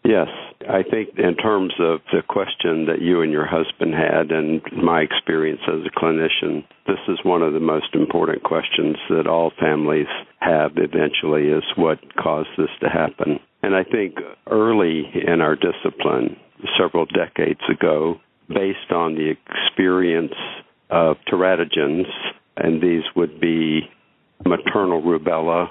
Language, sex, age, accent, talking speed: English, male, 60-79, American, 140 wpm